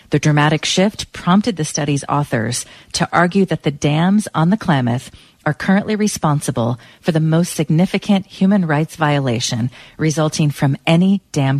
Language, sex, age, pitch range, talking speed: English, female, 40-59, 140-185 Hz, 150 wpm